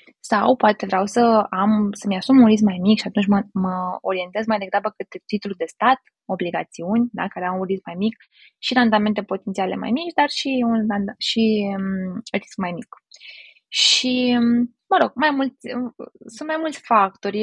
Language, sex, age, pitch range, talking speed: Romanian, female, 20-39, 200-240 Hz, 180 wpm